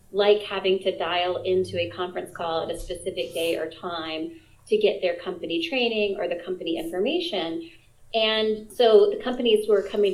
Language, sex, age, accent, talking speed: English, female, 30-49, American, 170 wpm